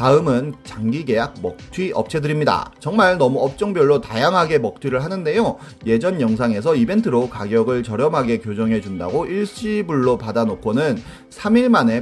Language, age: Korean, 30-49